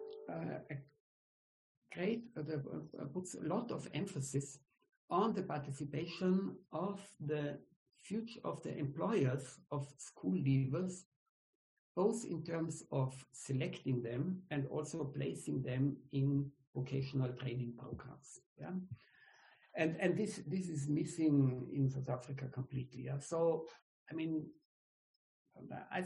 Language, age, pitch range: English, 60-79, 135-185 Hz